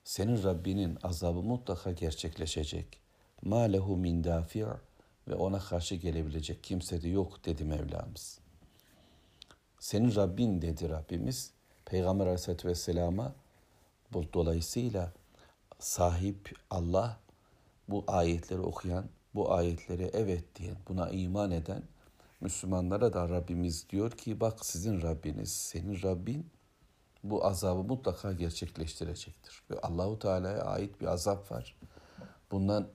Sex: male